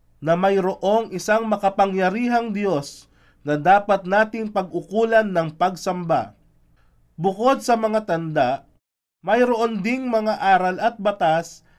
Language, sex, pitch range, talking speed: Filipino, male, 170-215 Hz, 105 wpm